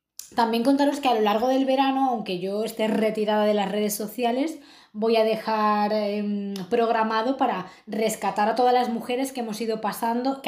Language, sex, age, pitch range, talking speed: Spanish, female, 20-39, 205-250 Hz, 185 wpm